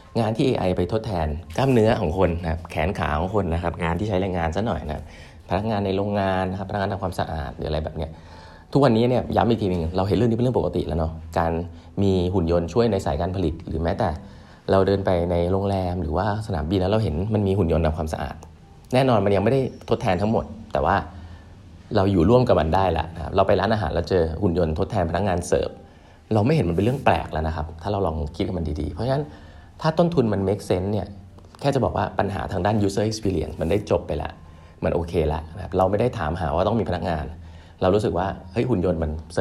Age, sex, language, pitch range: 20-39, male, Thai, 80-100 Hz